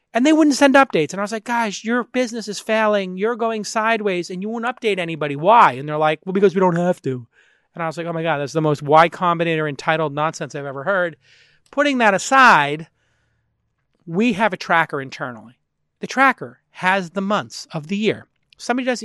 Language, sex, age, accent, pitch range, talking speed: English, male, 40-59, American, 165-220 Hz, 210 wpm